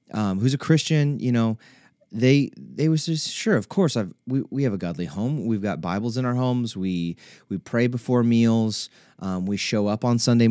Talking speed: 210 wpm